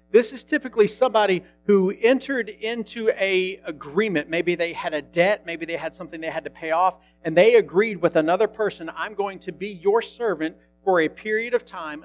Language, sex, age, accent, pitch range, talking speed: English, male, 40-59, American, 145-195 Hz, 200 wpm